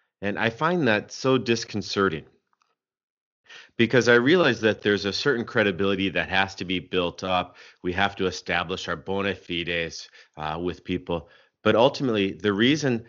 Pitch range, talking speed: 90-115 Hz, 155 wpm